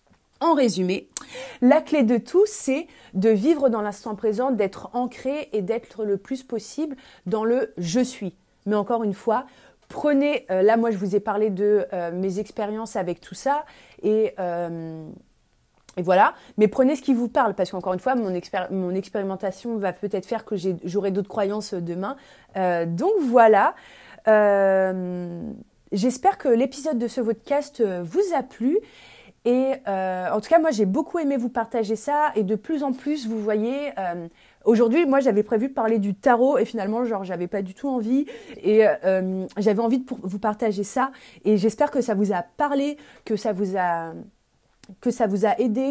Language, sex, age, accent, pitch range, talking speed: French, female, 30-49, French, 200-260 Hz, 185 wpm